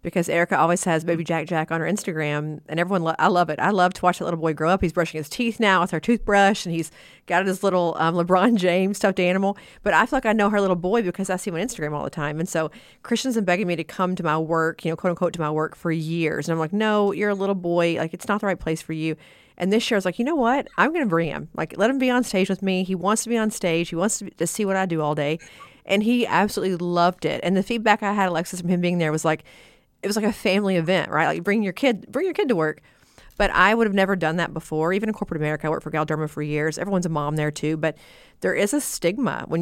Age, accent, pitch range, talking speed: 40-59, American, 160-200 Hz, 295 wpm